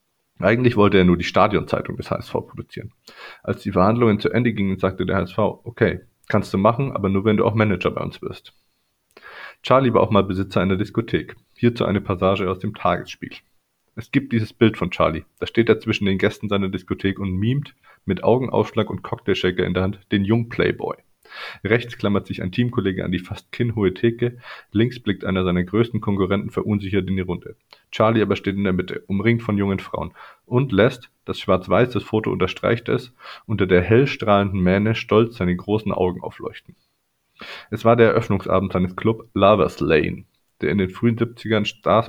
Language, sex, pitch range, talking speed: German, male, 95-110 Hz, 185 wpm